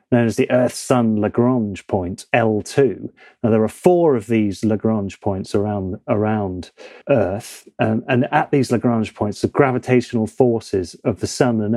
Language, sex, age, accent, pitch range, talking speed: English, male, 30-49, British, 110-130 Hz, 160 wpm